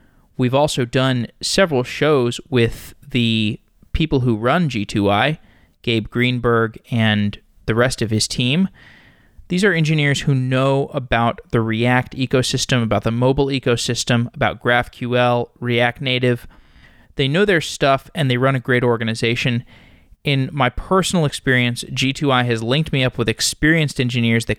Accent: American